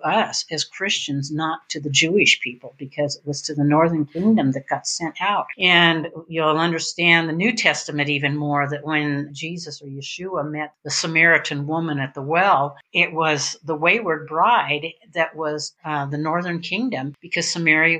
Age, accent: 60-79, American